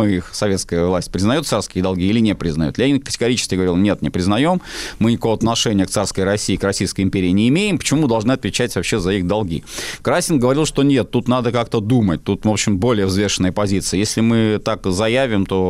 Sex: male